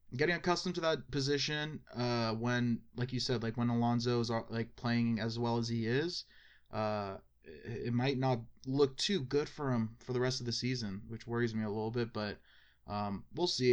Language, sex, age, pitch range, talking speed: English, male, 20-39, 110-125 Hz, 200 wpm